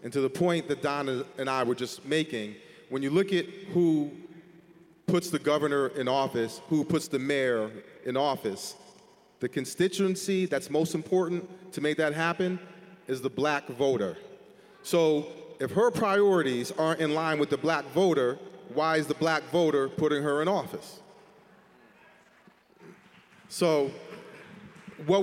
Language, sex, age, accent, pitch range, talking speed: English, male, 40-59, American, 135-165 Hz, 150 wpm